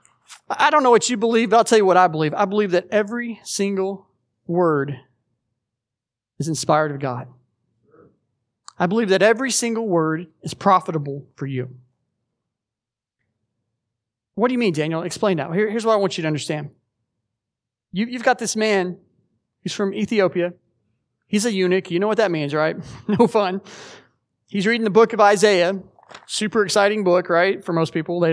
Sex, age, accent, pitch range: male, 30-49, American, 140-200 Hz